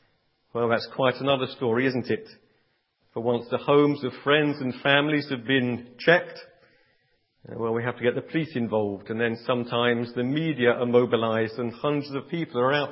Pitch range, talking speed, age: 125-160 Hz, 180 wpm, 50-69